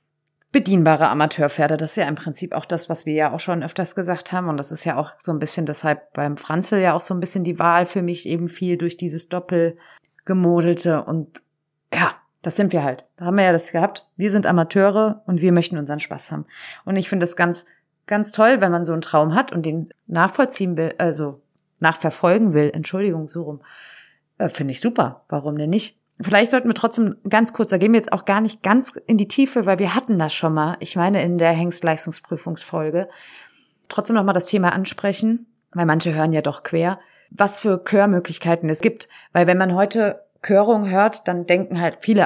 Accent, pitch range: German, 160-200 Hz